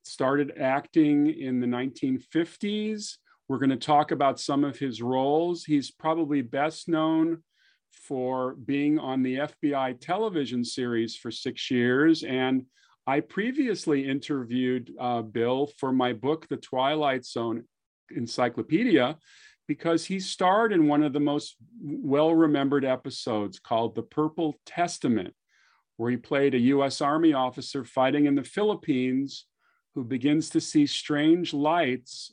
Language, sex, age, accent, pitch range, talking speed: English, male, 40-59, American, 125-160 Hz, 130 wpm